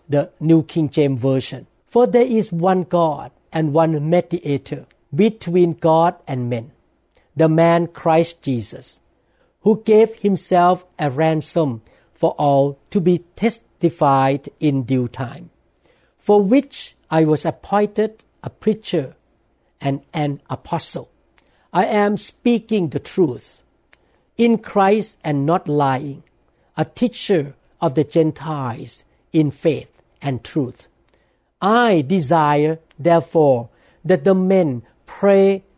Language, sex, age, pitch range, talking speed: English, male, 60-79, 145-190 Hz, 115 wpm